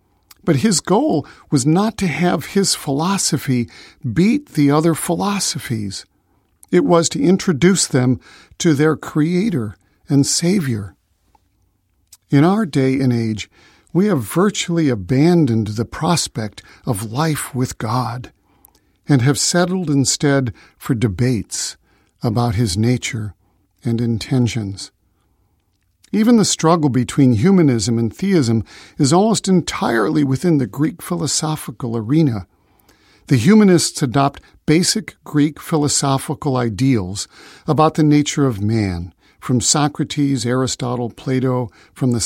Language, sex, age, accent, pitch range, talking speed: English, male, 50-69, American, 115-155 Hz, 115 wpm